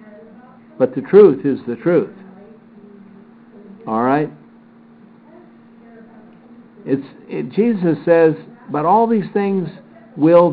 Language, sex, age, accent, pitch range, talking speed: English, male, 60-79, American, 160-225 Hz, 95 wpm